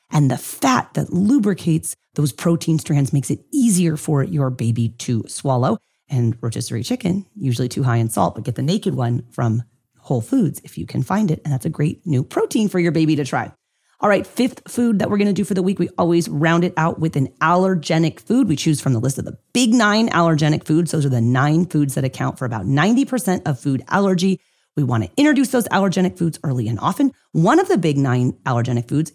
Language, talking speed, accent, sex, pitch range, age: English, 225 wpm, American, female, 125-180 Hz, 30-49